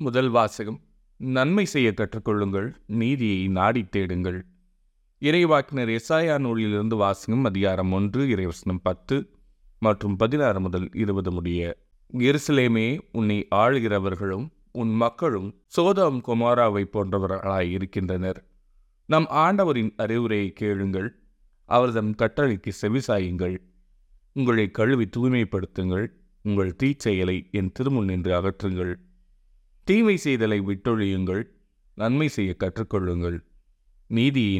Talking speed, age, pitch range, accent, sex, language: 90 wpm, 30-49, 95-125 Hz, native, male, Tamil